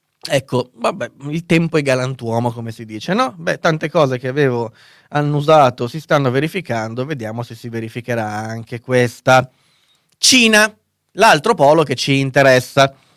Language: Italian